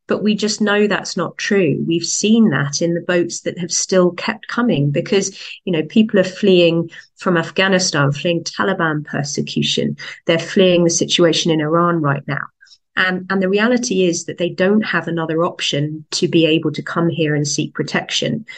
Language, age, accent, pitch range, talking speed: English, 30-49, British, 155-185 Hz, 185 wpm